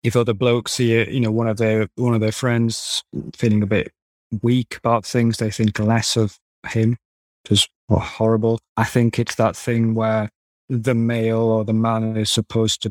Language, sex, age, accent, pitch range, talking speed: English, male, 20-39, British, 110-120 Hz, 190 wpm